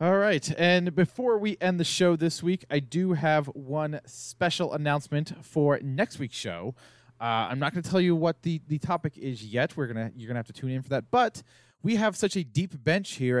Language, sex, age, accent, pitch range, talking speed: English, male, 20-39, American, 130-175 Hz, 230 wpm